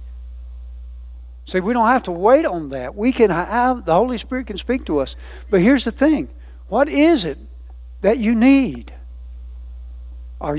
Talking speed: 165 wpm